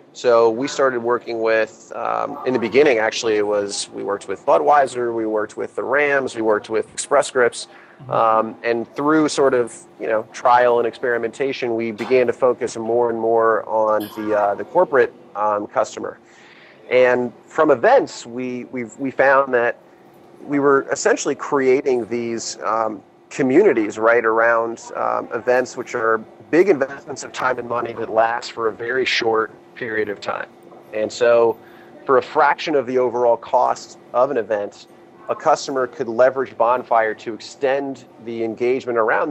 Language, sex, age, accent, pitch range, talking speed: English, male, 30-49, American, 110-130 Hz, 165 wpm